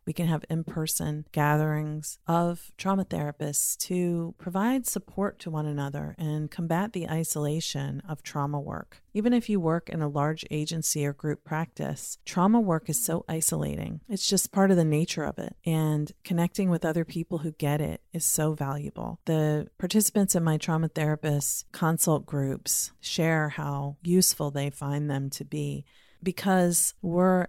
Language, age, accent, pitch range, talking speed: English, 40-59, American, 150-175 Hz, 160 wpm